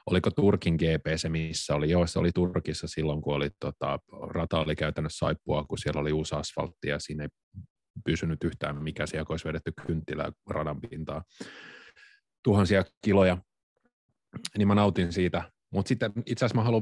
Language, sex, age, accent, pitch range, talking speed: Finnish, male, 30-49, native, 80-100 Hz, 170 wpm